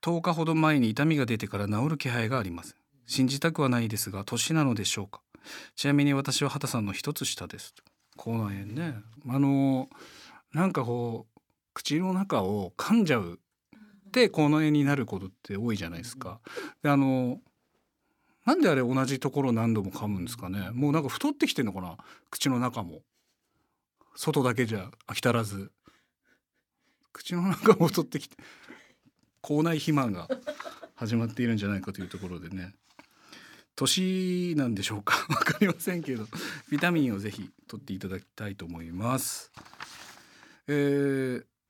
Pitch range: 115-155 Hz